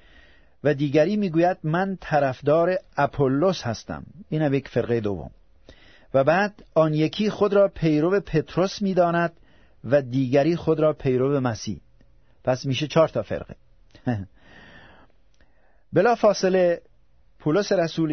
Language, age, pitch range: Persian, 50-69, 115-155 Hz